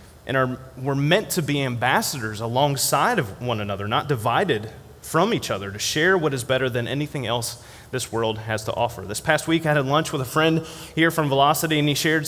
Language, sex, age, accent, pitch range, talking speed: English, male, 30-49, American, 115-150 Hz, 210 wpm